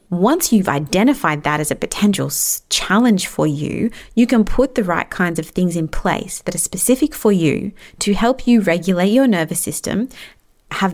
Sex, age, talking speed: female, 30-49, 180 wpm